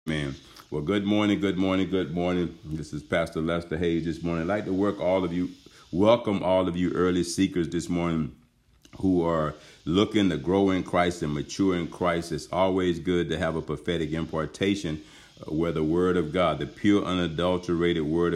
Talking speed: 190 wpm